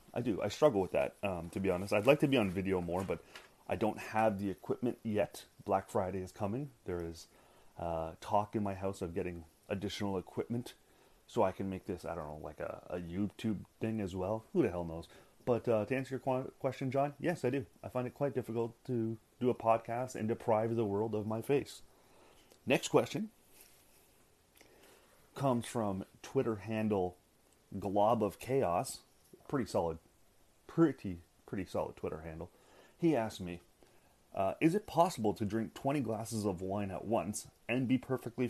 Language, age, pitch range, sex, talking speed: English, 30-49, 95-130 Hz, male, 185 wpm